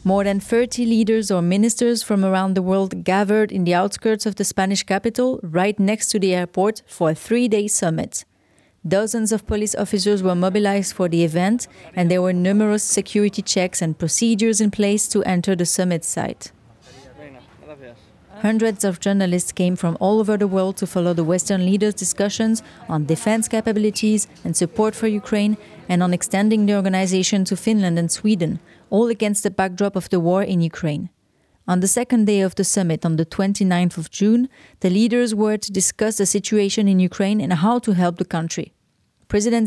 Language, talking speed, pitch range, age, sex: English, 180 wpm, 185-215 Hz, 30-49, female